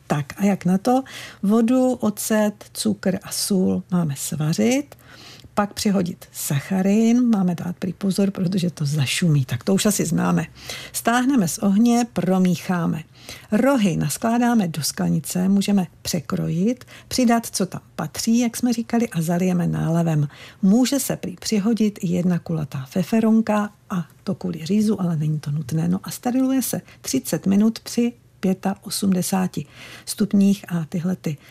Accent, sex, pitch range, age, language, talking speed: native, female, 165-210 Hz, 50-69, Czech, 135 wpm